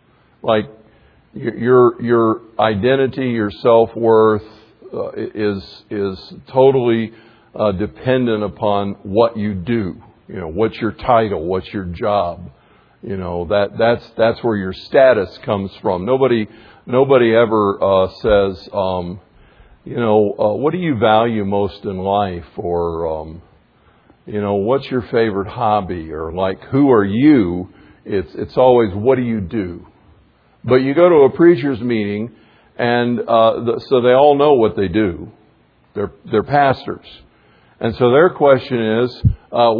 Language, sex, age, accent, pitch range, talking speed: English, male, 50-69, American, 100-135 Hz, 150 wpm